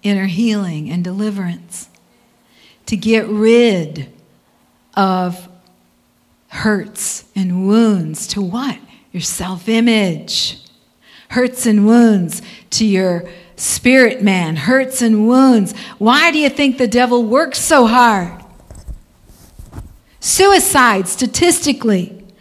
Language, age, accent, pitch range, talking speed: English, 50-69, American, 205-280 Hz, 95 wpm